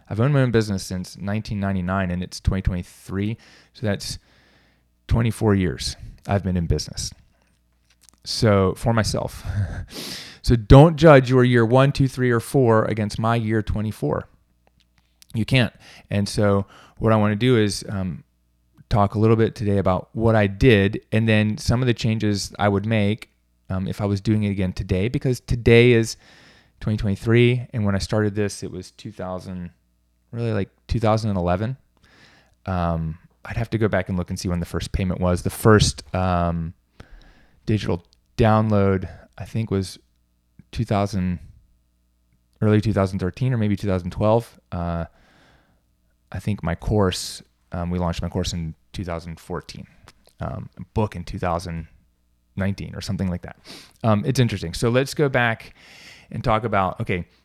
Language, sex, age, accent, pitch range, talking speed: English, male, 30-49, American, 85-110 Hz, 155 wpm